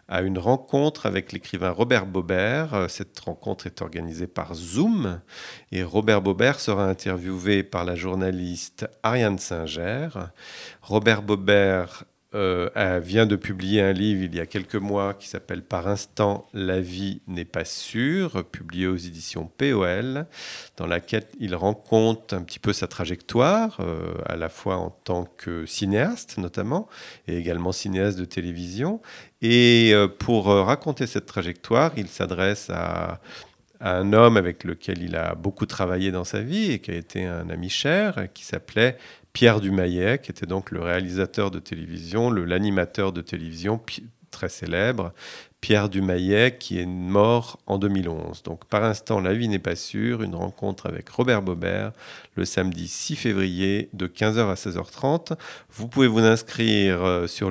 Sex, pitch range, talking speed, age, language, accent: male, 90-110 Hz, 155 wpm, 40-59, French, French